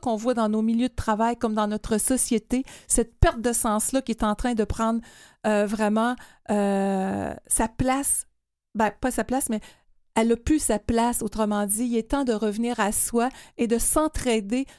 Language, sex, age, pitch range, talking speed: French, female, 40-59, 215-250 Hz, 195 wpm